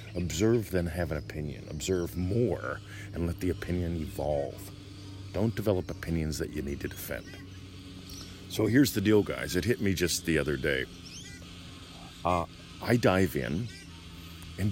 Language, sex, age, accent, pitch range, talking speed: English, male, 40-59, American, 75-100 Hz, 150 wpm